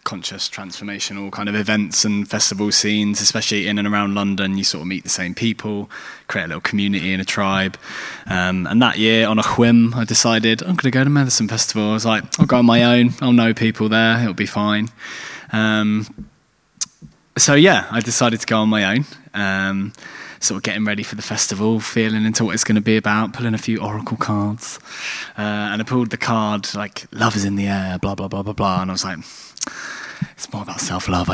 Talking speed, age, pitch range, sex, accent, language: 215 wpm, 20-39, 100-115 Hz, male, British, English